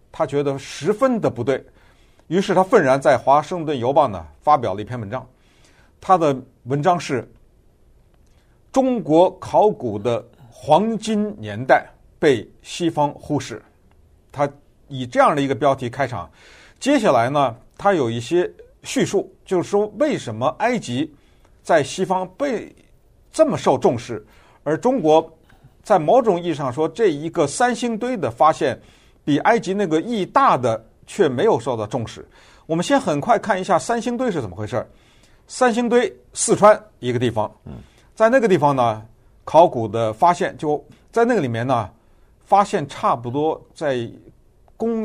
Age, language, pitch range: 50-69, Chinese, 120-185 Hz